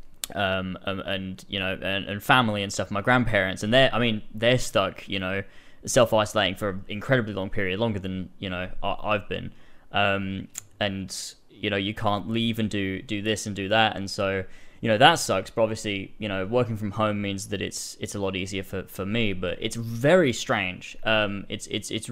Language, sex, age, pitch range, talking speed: English, male, 10-29, 100-120 Hz, 205 wpm